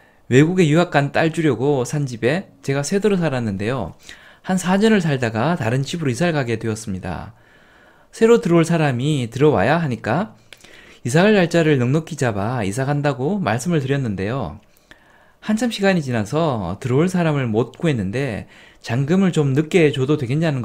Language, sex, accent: Korean, male, native